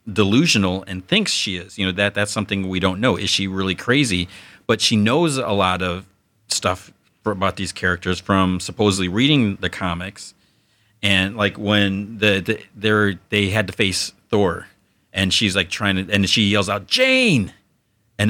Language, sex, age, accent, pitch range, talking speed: English, male, 30-49, American, 95-115 Hz, 175 wpm